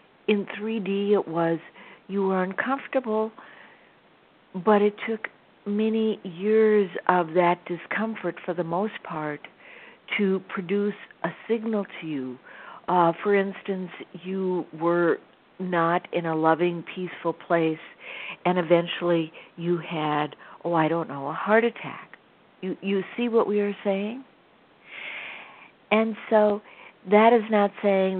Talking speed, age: 130 wpm, 60-79